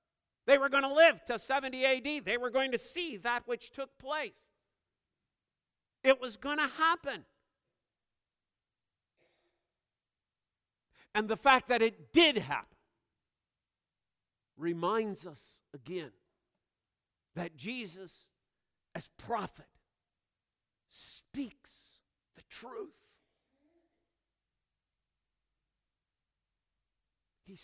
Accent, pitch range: American, 215-280 Hz